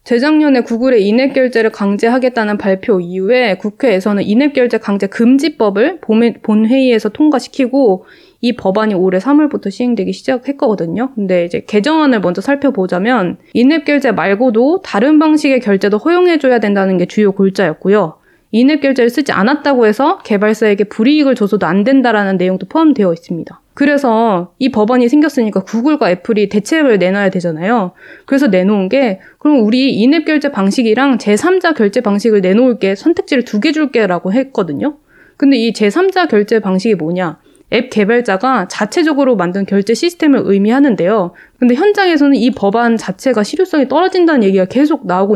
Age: 20-39